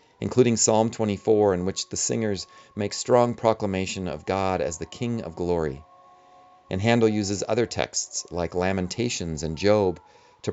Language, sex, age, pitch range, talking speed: English, male, 40-59, 90-115 Hz, 155 wpm